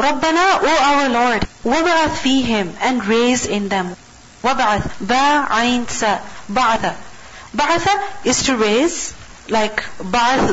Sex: female